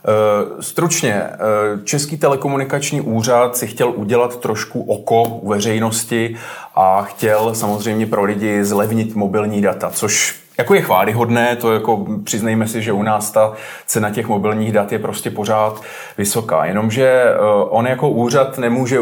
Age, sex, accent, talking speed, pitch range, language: 30-49, male, native, 140 wpm, 105-125 Hz, Czech